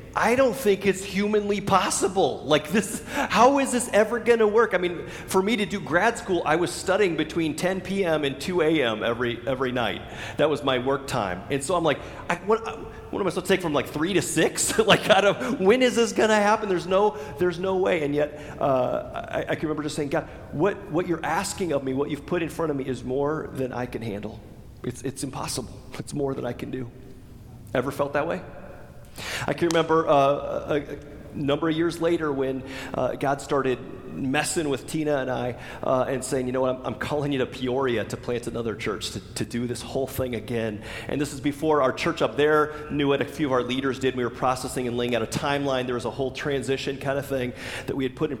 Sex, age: male, 40-59